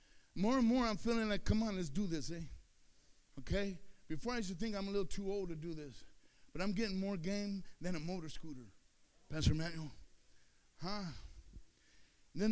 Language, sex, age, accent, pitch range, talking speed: English, male, 50-69, American, 160-235 Hz, 185 wpm